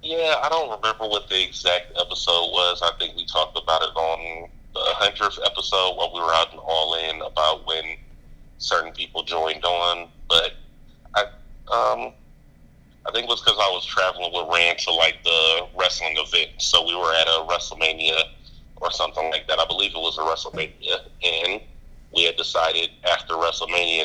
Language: English